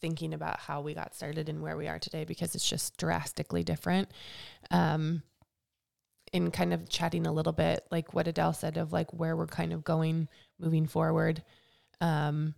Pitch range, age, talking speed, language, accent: 150-170 Hz, 20-39, 180 wpm, English, American